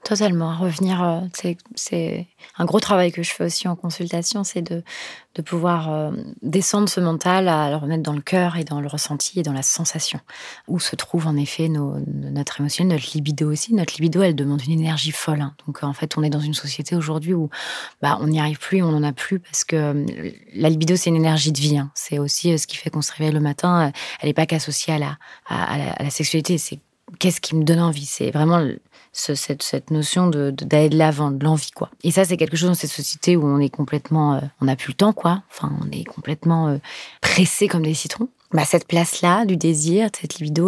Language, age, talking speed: French, 20-39, 230 wpm